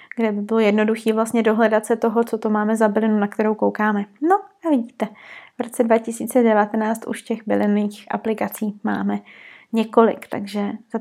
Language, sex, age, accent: Czech, female, 20-39, native